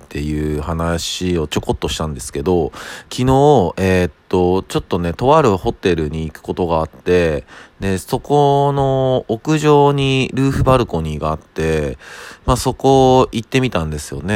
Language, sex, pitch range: Japanese, male, 80-115 Hz